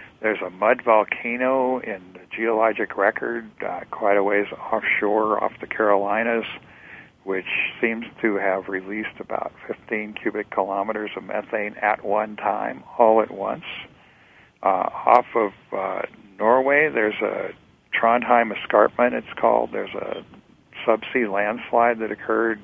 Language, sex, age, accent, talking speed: English, male, 50-69, American, 135 wpm